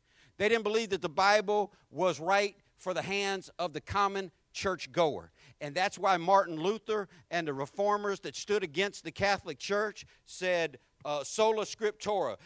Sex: male